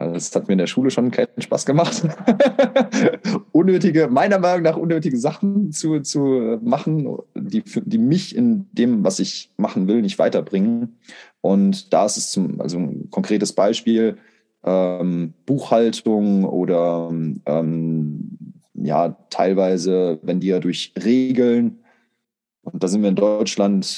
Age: 20-39